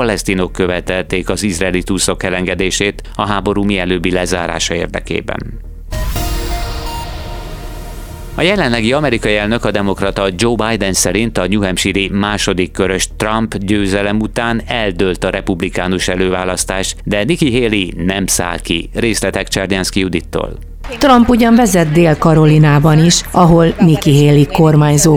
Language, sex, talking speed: Hungarian, male, 120 wpm